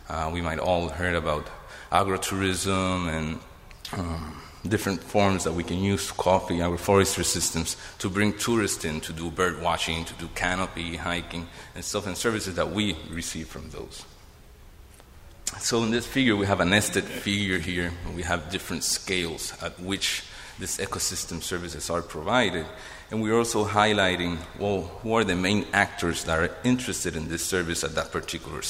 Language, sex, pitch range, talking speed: English, male, 85-100 Hz, 170 wpm